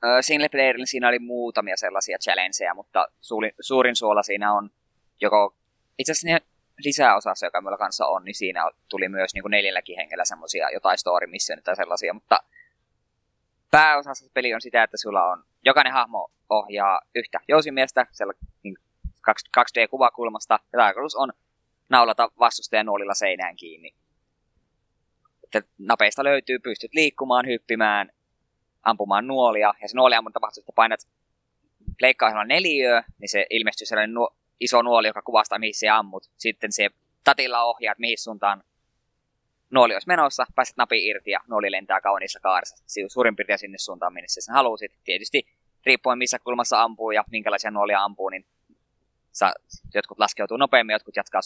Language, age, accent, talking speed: Finnish, 20-39, native, 145 wpm